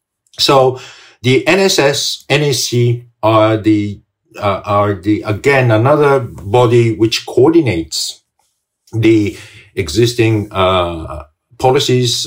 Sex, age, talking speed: male, 50-69, 90 wpm